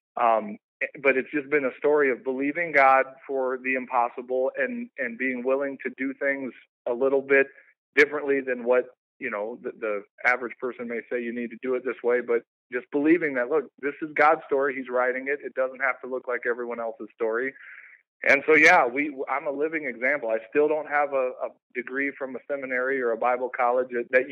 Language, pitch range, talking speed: English, 120-135 Hz, 210 wpm